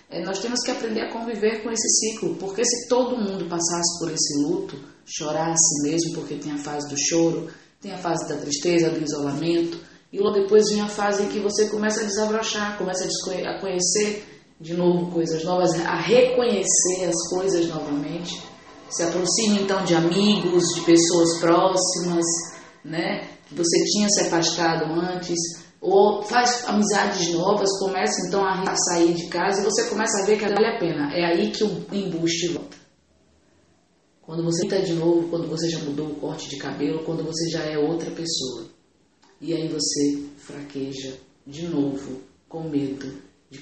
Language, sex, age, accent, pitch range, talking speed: English, female, 20-39, Brazilian, 155-195 Hz, 170 wpm